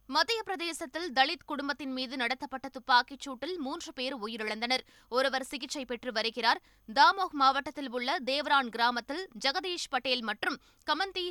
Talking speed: 125 wpm